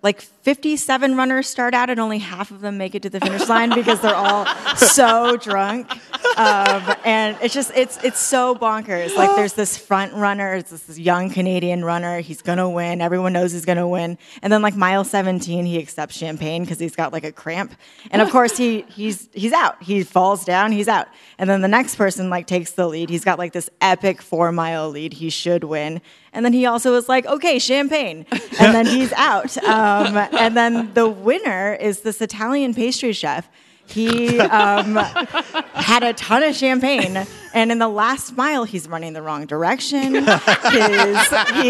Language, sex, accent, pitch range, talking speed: English, female, American, 180-240 Hz, 195 wpm